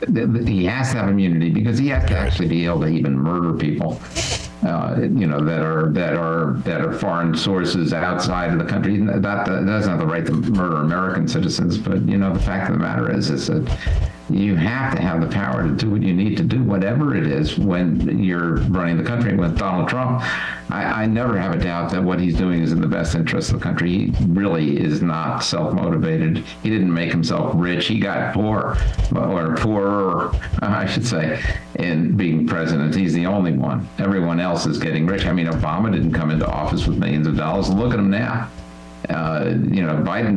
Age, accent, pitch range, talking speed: 50-69, American, 80-100 Hz, 210 wpm